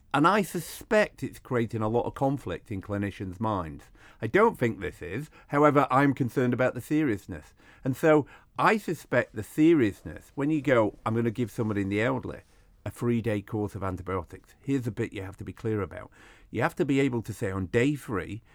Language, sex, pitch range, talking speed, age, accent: English, male, 95-130 Hz, 205 wpm, 50-69, British